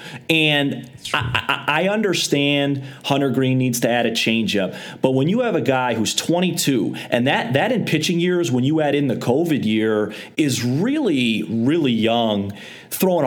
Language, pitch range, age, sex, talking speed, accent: English, 130-175 Hz, 30-49, male, 170 wpm, American